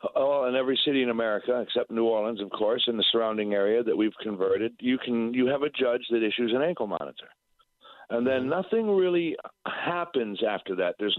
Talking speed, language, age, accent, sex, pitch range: 190 wpm, English, 50-69, American, male, 115-145 Hz